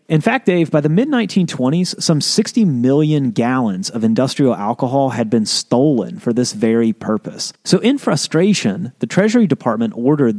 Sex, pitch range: male, 120-180 Hz